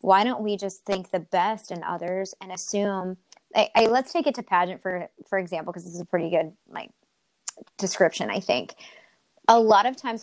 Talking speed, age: 205 wpm, 20-39